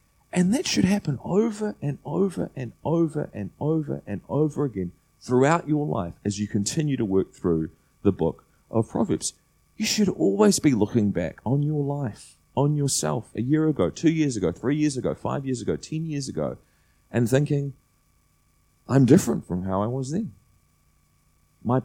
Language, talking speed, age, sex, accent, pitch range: English, 175 wpm, 30-49, male, Australian, 105-155 Hz